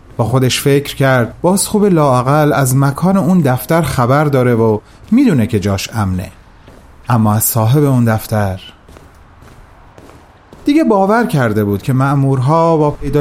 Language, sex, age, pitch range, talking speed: Persian, male, 30-49, 105-155 Hz, 140 wpm